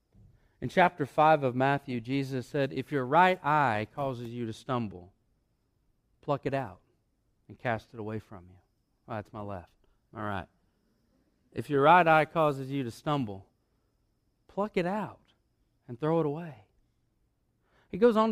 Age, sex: 40-59, male